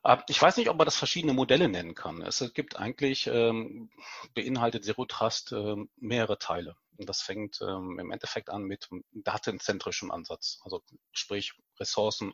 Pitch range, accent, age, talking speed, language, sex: 100-140 Hz, German, 40-59, 135 wpm, German, male